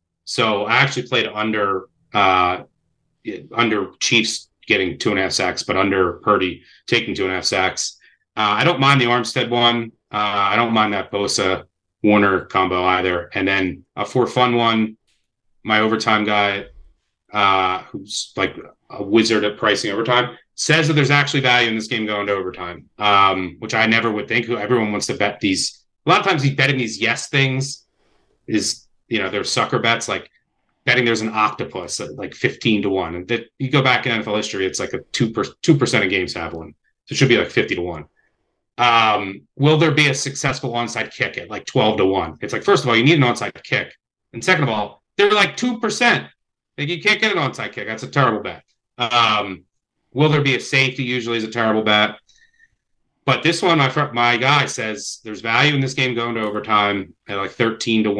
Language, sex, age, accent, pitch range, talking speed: English, male, 30-49, American, 105-130 Hz, 205 wpm